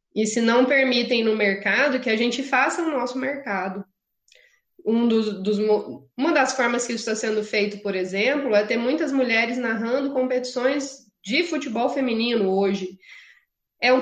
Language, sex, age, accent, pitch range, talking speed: Portuguese, female, 20-39, Brazilian, 220-260 Hz, 150 wpm